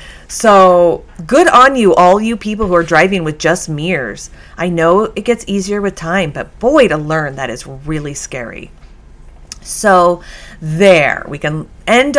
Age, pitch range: 30-49, 155-210 Hz